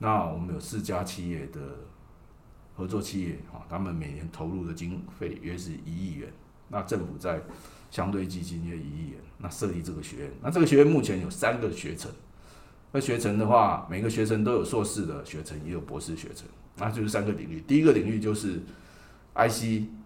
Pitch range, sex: 85-110 Hz, male